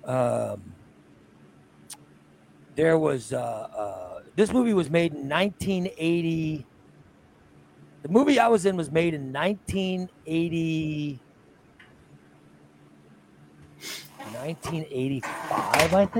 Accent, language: American, English